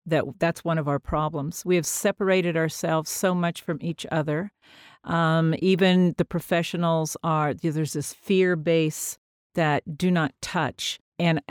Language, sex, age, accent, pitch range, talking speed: English, female, 50-69, American, 160-210 Hz, 150 wpm